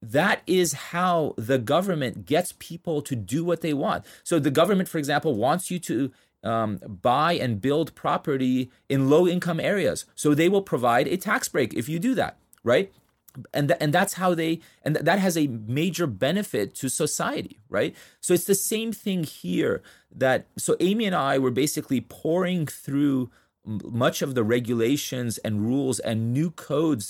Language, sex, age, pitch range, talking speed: English, male, 30-49, 110-155 Hz, 180 wpm